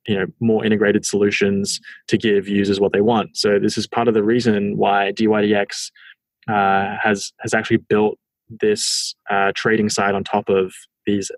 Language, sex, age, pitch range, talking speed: English, male, 20-39, 100-110 Hz, 175 wpm